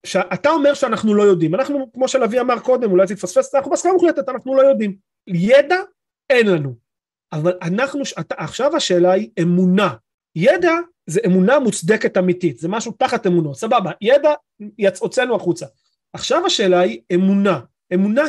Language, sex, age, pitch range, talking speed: Hebrew, male, 30-49, 185-280 Hz, 150 wpm